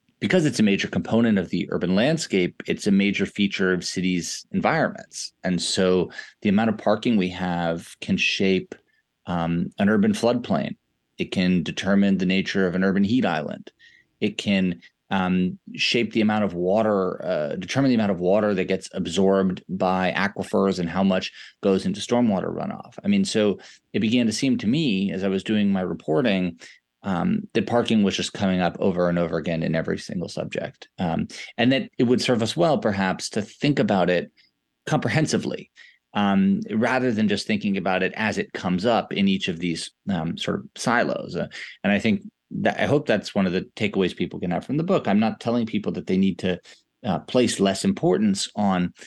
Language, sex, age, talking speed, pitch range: English, male, 30-49, 195 wpm, 95-120 Hz